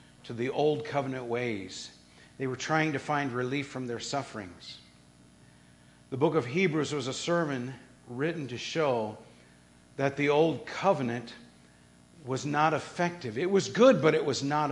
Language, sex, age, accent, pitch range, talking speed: English, male, 50-69, American, 95-150 Hz, 155 wpm